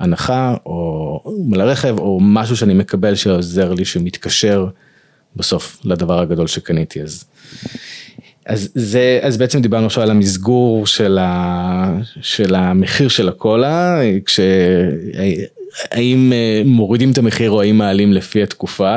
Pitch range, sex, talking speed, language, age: 95-125 Hz, male, 120 wpm, Hebrew, 30-49